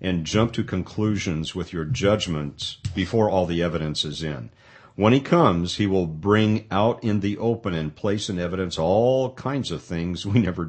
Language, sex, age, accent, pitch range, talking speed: English, male, 50-69, American, 90-120 Hz, 185 wpm